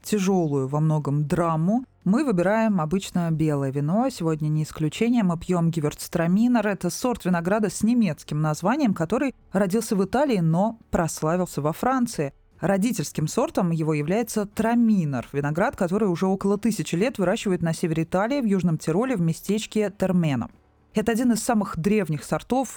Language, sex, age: Russian, female, 20-39